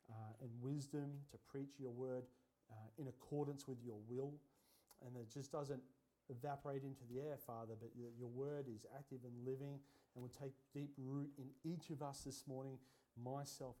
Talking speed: 185 wpm